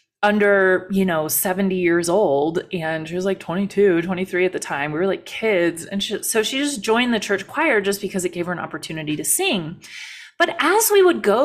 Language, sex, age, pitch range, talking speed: English, female, 30-49, 185-255 Hz, 215 wpm